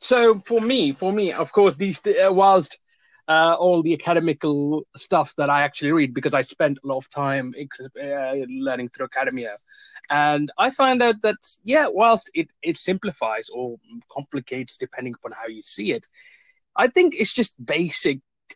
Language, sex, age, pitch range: English, male, 20-39, 140-200 Hz